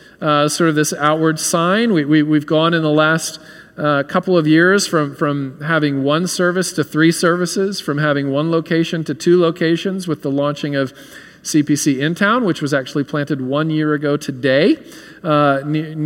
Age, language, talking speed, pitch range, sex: 40-59, English, 175 wpm, 145-175 Hz, male